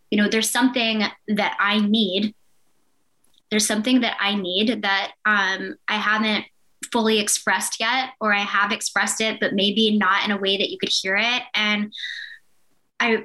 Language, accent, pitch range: English, American, 200-240 Hz